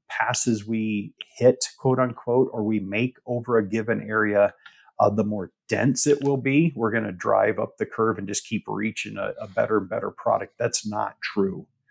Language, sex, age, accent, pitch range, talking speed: English, male, 40-59, American, 105-125 Hz, 190 wpm